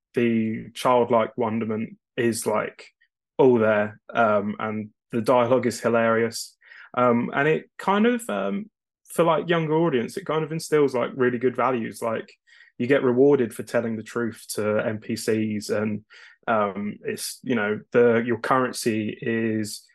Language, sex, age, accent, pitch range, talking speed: English, male, 20-39, British, 110-125 Hz, 150 wpm